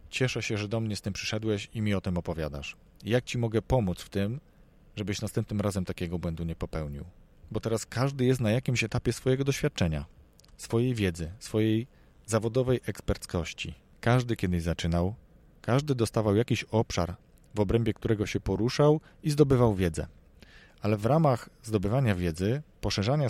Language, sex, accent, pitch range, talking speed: Polish, male, native, 90-120 Hz, 155 wpm